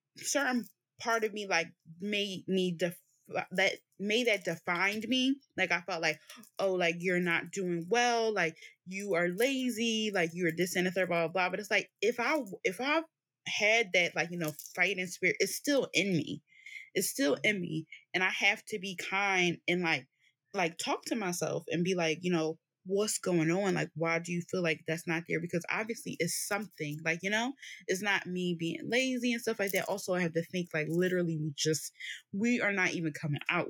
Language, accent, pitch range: English, American, 165-210 Hz